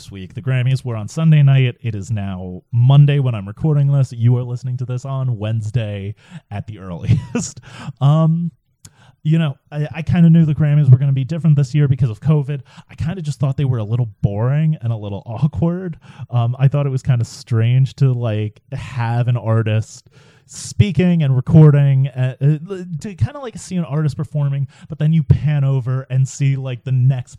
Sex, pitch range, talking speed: male, 120-145 Hz, 210 wpm